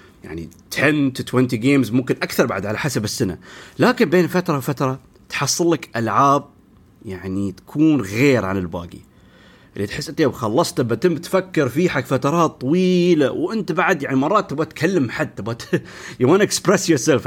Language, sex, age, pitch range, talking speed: Arabic, male, 30-49, 105-155 Hz, 165 wpm